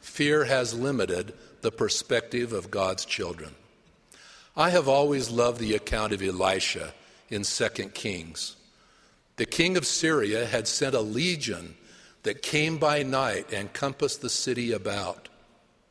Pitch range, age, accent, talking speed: 105-140 Hz, 50-69, American, 135 wpm